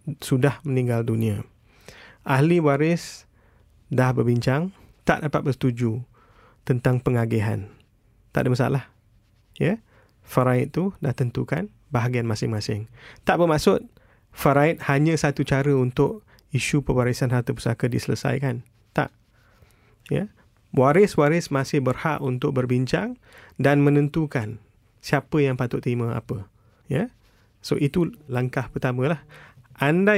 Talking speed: 115 wpm